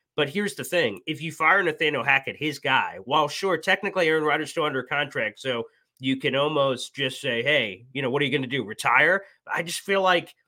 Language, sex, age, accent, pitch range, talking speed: English, male, 30-49, American, 135-170 Hz, 220 wpm